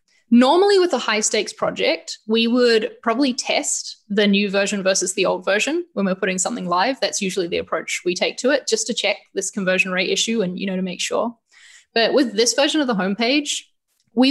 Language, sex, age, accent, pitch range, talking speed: English, female, 10-29, Australian, 195-235 Hz, 215 wpm